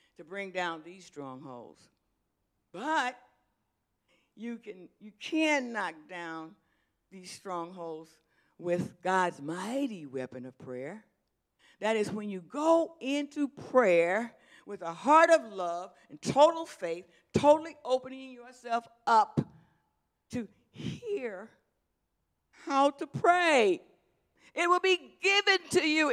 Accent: American